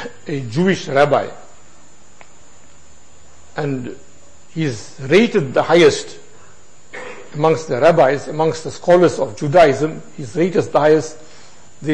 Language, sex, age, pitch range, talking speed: English, male, 60-79, 150-195 Hz, 115 wpm